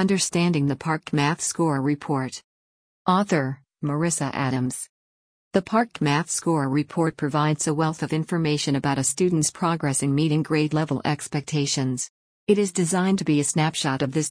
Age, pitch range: 50-69, 140-165 Hz